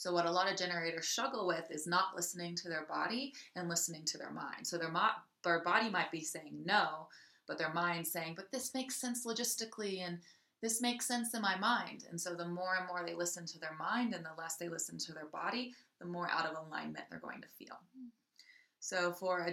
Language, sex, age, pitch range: English, female, 20-39, 170-200 Hz